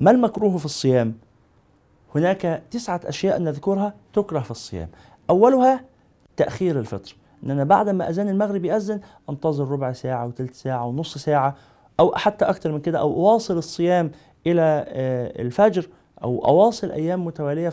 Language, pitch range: Arabic, 130-190 Hz